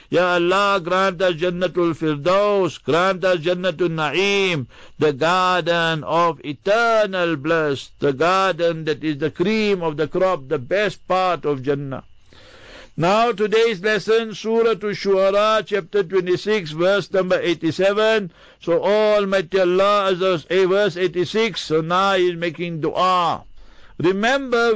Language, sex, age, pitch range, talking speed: English, male, 60-79, 170-205 Hz, 135 wpm